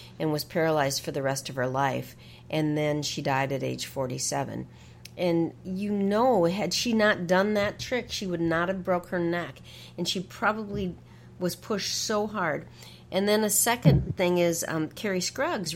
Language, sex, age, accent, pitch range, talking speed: English, female, 50-69, American, 150-195 Hz, 185 wpm